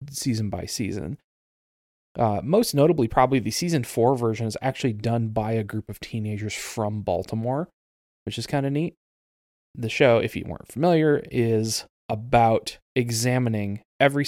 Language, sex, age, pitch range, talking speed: English, male, 20-39, 105-130 Hz, 150 wpm